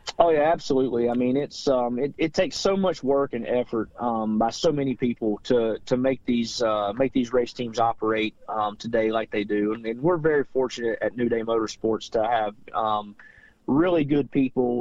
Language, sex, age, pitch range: English, male, 30-49, 110-130 Hz